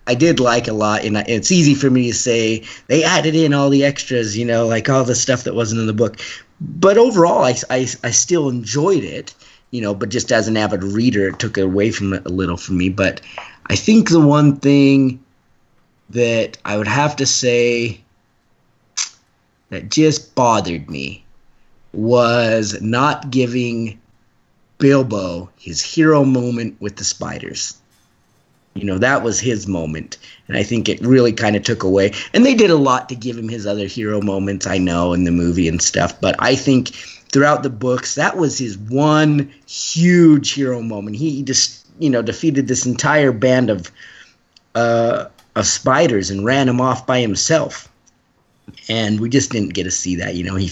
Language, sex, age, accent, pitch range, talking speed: English, male, 30-49, American, 100-135 Hz, 185 wpm